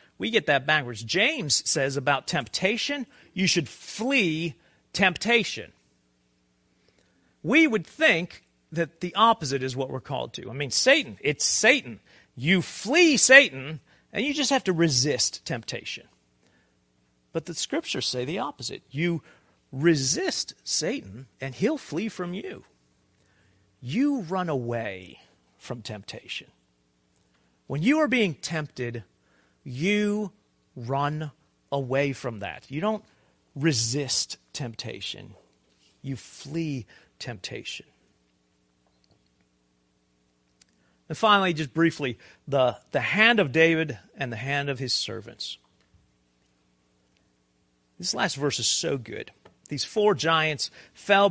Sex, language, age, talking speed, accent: male, English, 40-59, 115 wpm, American